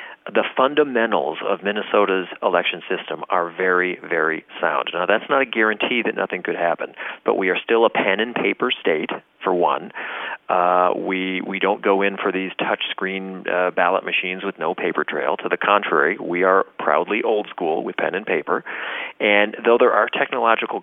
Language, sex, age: English, male, 40-59